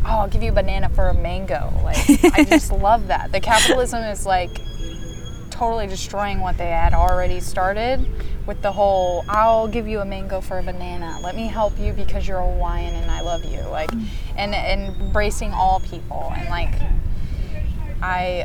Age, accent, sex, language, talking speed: 20-39, American, female, English, 185 wpm